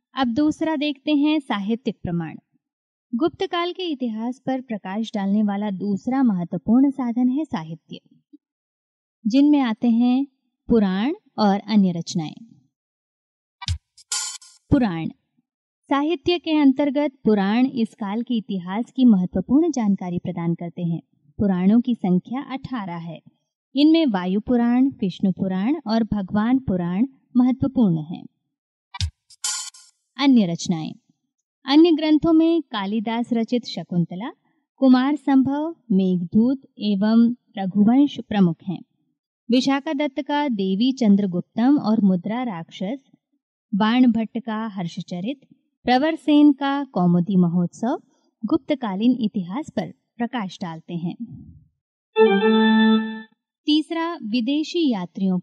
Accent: native